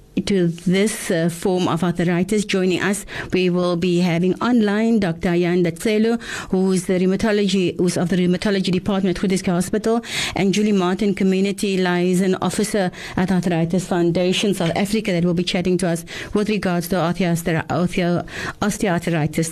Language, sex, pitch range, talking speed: English, female, 165-190 Hz, 140 wpm